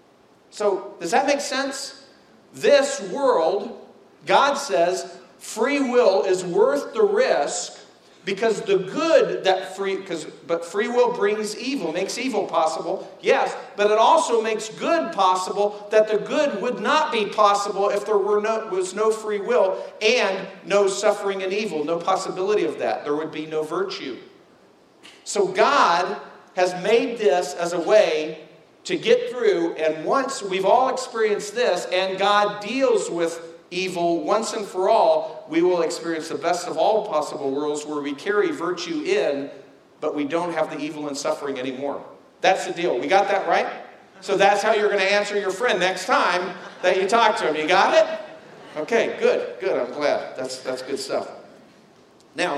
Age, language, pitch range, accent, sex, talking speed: 50-69, English, 175-245 Hz, American, male, 170 wpm